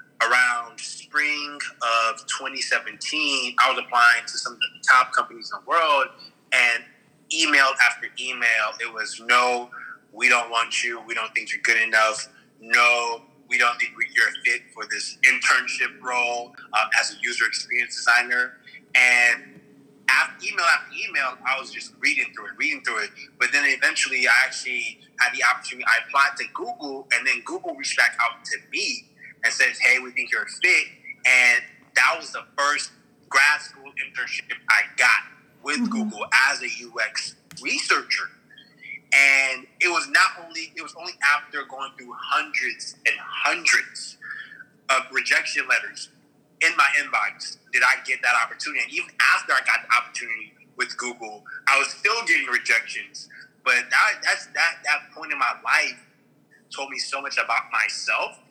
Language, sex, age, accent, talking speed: English, male, 30-49, American, 165 wpm